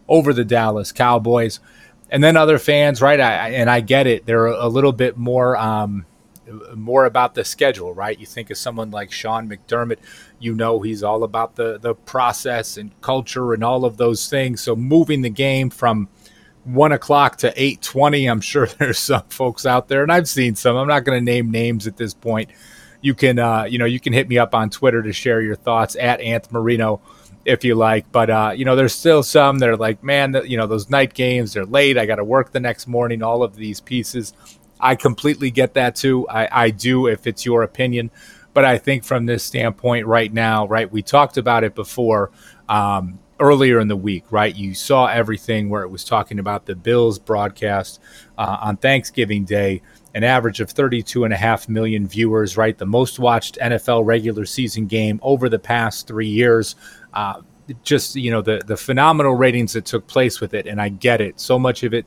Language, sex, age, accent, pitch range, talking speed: English, male, 30-49, American, 110-130 Hz, 215 wpm